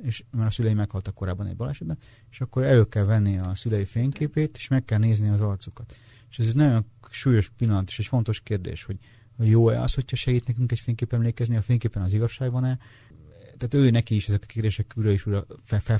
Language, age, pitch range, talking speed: Hungarian, 30-49, 100-115 Hz, 215 wpm